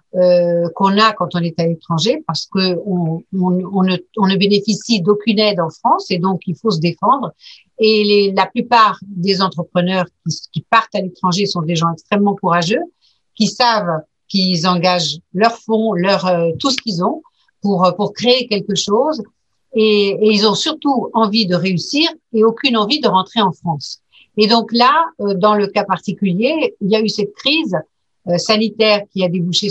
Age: 60-79